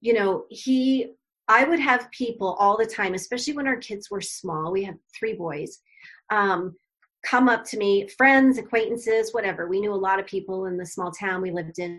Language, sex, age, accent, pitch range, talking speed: English, female, 30-49, American, 185-255 Hz, 205 wpm